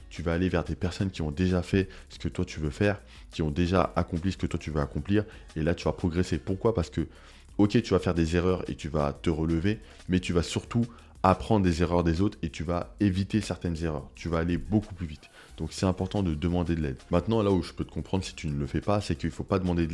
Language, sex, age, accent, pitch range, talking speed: French, male, 20-39, French, 80-95 Hz, 280 wpm